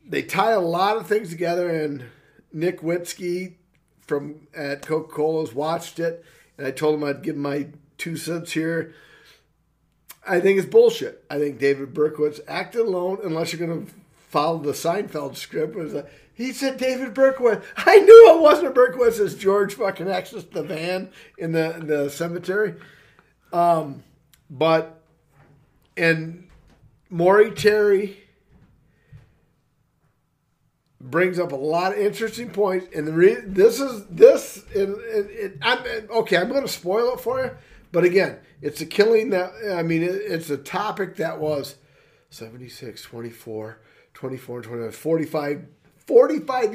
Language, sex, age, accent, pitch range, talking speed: English, male, 50-69, American, 150-205 Hz, 150 wpm